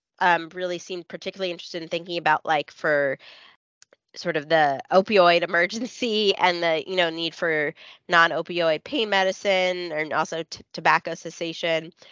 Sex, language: female, English